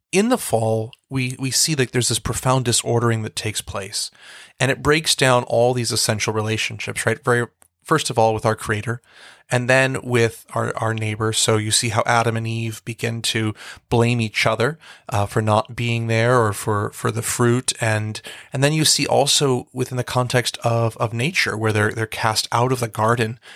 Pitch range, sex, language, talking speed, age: 110-130 Hz, male, English, 200 wpm, 30-49